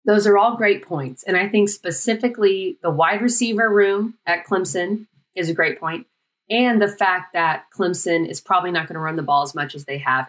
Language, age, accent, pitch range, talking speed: English, 30-49, American, 165-205 Hz, 215 wpm